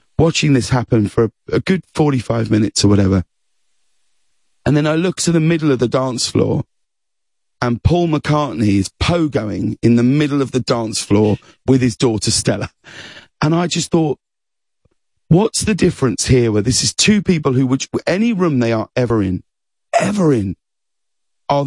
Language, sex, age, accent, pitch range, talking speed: English, male, 40-59, British, 115-155 Hz, 170 wpm